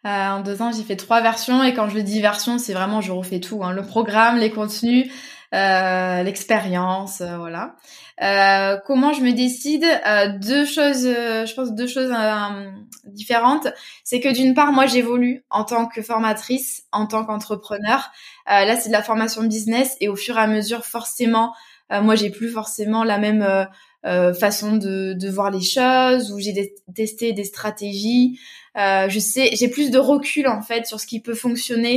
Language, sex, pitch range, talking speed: French, female, 205-245 Hz, 195 wpm